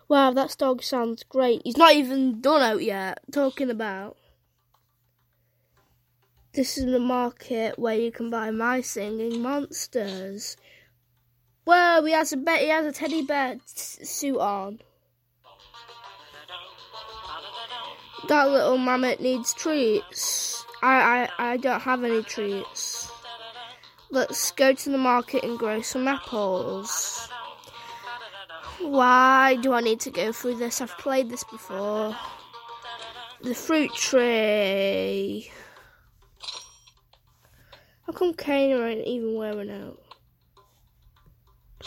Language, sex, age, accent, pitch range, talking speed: English, female, 10-29, British, 215-275 Hz, 115 wpm